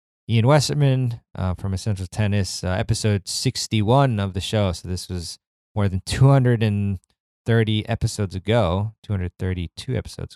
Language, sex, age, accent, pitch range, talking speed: English, male, 20-39, American, 90-115 Hz, 125 wpm